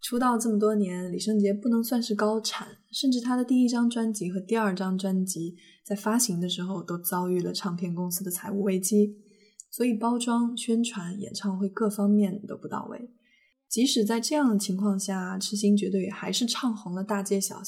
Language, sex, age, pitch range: Chinese, female, 20-39, 190-225 Hz